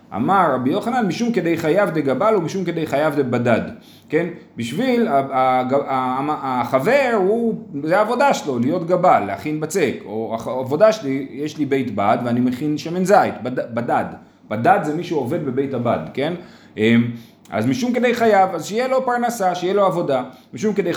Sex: male